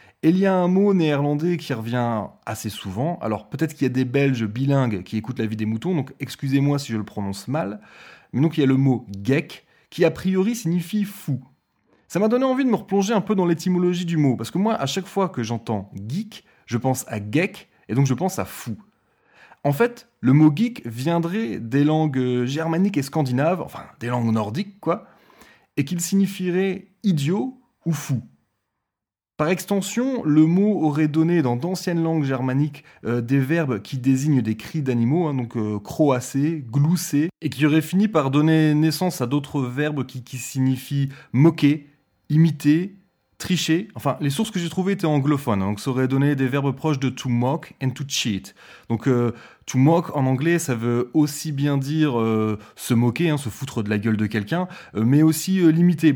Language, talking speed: French, 215 wpm